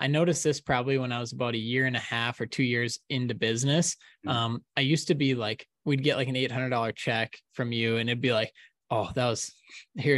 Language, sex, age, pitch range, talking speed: English, male, 20-39, 120-145 Hz, 235 wpm